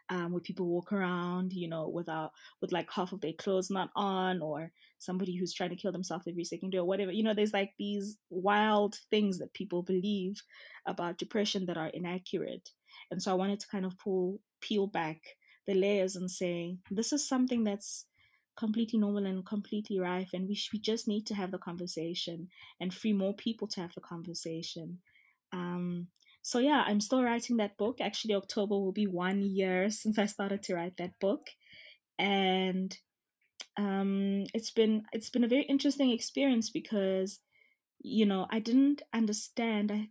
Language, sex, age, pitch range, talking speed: English, female, 20-39, 180-215 Hz, 180 wpm